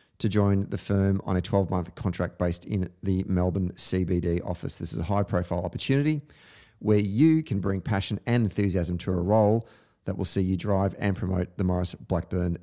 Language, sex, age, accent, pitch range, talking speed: English, male, 30-49, Australian, 90-105 Hz, 185 wpm